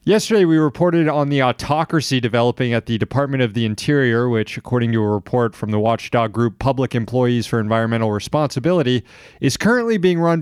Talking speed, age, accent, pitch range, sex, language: 180 wpm, 30-49, American, 115-150 Hz, male, English